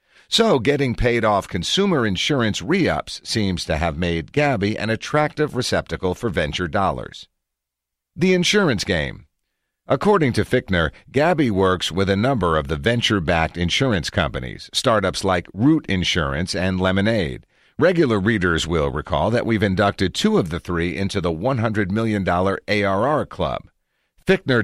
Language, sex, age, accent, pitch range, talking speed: English, male, 50-69, American, 90-125 Hz, 140 wpm